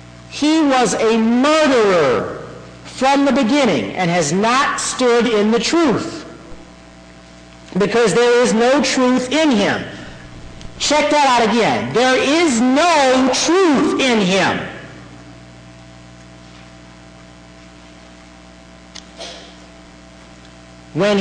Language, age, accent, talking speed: English, 50-69, American, 90 wpm